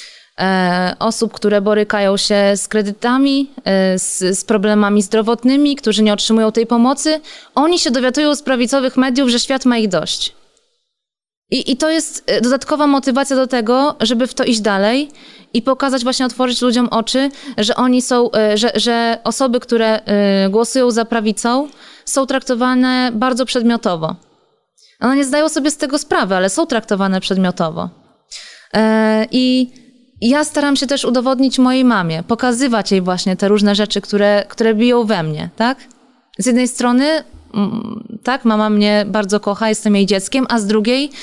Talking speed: 150 wpm